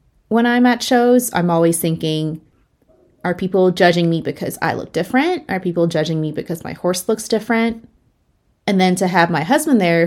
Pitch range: 160-205 Hz